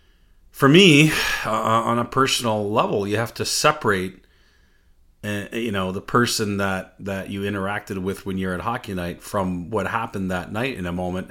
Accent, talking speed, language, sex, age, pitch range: American, 180 wpm, English, male, 40-59, 90-110 Hz